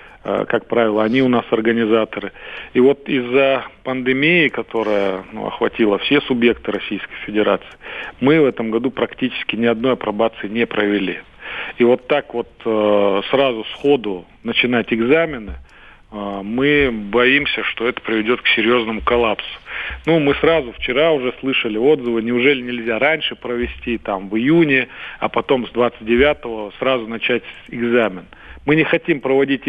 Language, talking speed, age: Russian, 140 wpm, 40-59